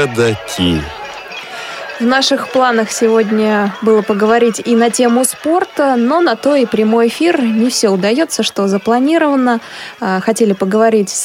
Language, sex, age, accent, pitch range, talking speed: Russian, female, 20-39, native, 210-255 Hz, 125 wpm